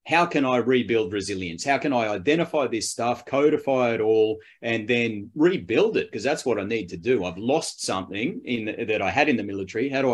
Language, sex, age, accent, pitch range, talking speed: English, male, 30-49, Australian, 110-135 Hz, 225 wpm